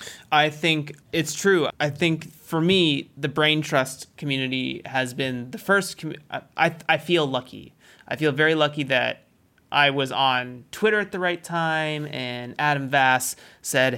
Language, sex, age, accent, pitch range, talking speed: English, male, 30-49, American, 130-155 Hz, 160 wpm